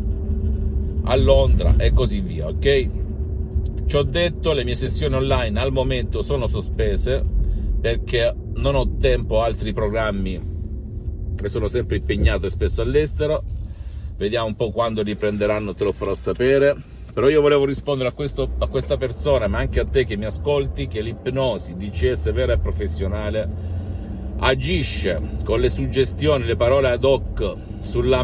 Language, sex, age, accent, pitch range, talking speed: Italian, male, 50-69, native, 75-110 Hz, 150 wpm